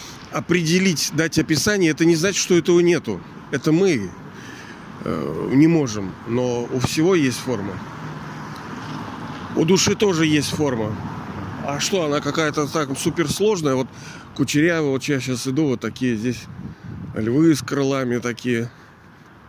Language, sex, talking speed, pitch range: Russian, male, 130 wpm, 120-155 Hz